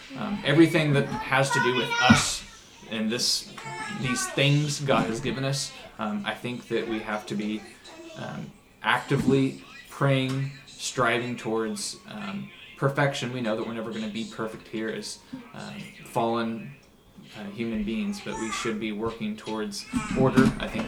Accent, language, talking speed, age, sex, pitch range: American, English, 160 wpm, 20-39, male, 110-135 Hz